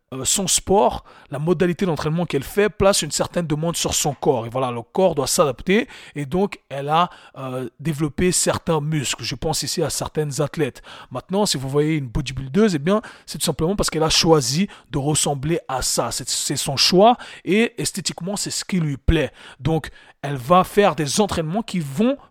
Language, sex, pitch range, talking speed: French, male, 140-180 Hz, 190 wpm